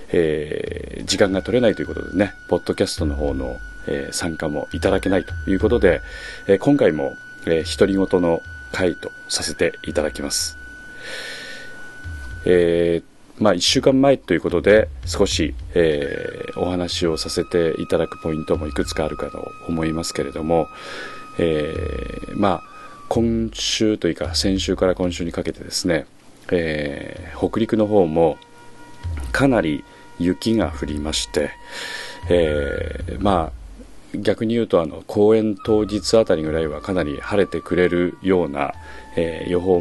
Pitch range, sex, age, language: 80-105 Hz, male, 30-49, Japanese